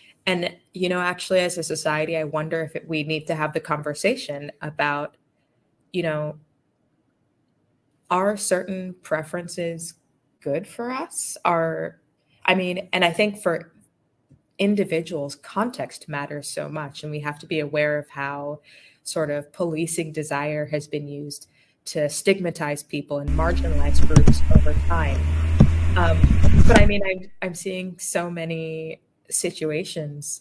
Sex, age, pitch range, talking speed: female, 20-39, 145-170 Hz, 140 wpm